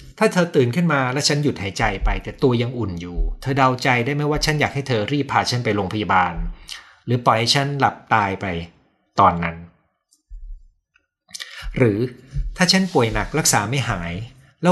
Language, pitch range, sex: Thai, 105-140 Hz, male